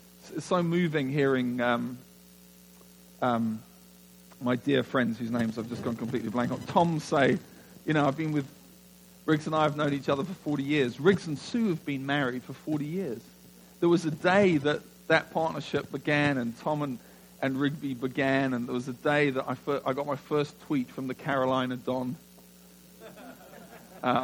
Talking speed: 185 wpm